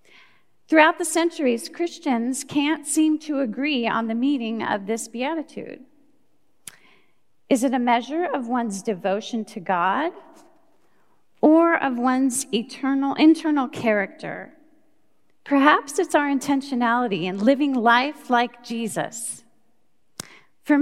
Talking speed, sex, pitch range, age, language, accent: 110 wpm, female, 225-300 Hz, 40-59, English, American